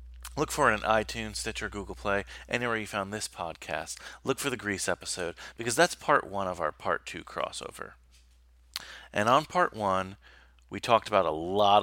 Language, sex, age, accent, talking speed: English, male, 30-49, American, 185 wpm